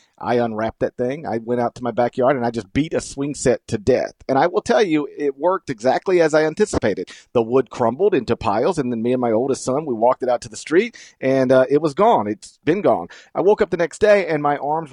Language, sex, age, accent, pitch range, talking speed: English, male, 40-59, American, 120-145 Hz, 265 wpm